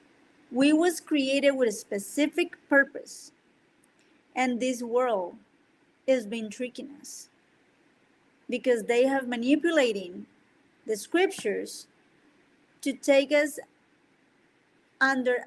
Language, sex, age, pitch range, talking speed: English, female, 40-59, 245-315 Hz, 95 wpm